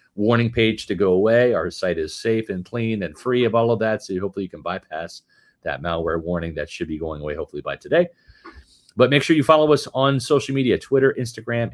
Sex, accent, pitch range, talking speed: male, American, 90-135 Hz, 225 wpm